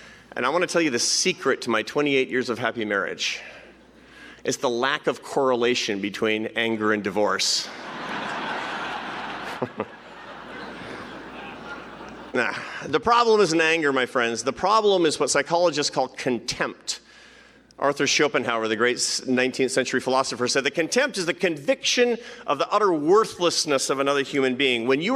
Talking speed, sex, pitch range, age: 145 wpm, male, 125-185 Hz, 40-59